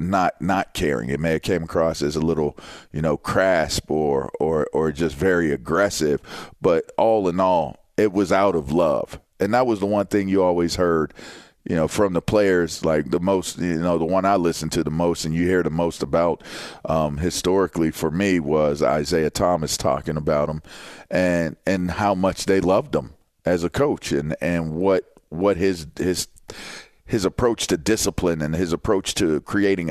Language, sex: English, male